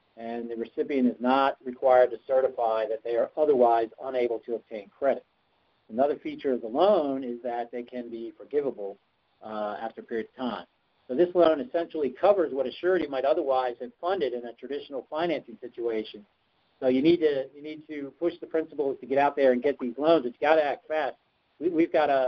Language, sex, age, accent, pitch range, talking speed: English, male, 50-69, American, 120-150 Hz, 205 wpm